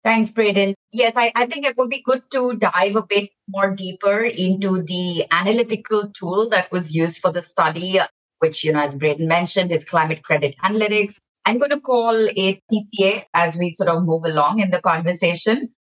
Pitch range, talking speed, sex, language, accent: 165-210 Hz, 190 wpm, female, English, Indian